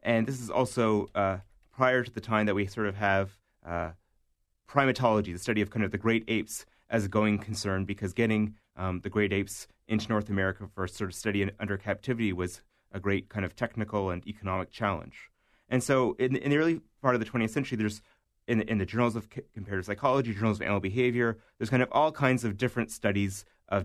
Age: 30-49